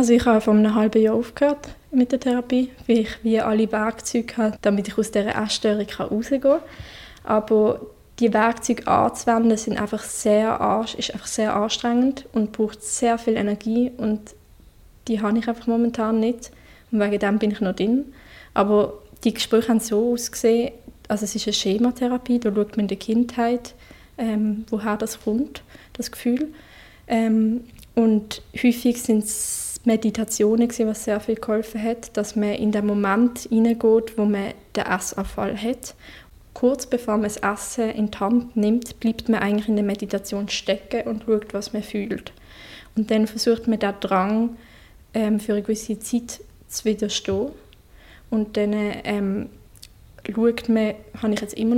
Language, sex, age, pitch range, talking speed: German, female, 20-39, 210-235 Hz, 160 wpm